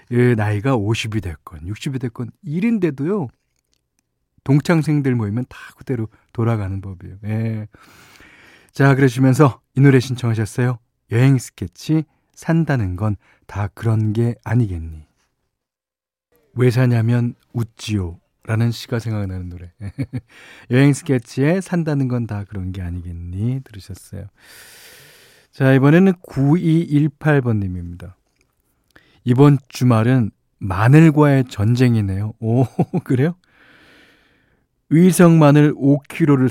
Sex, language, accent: male, Korean, native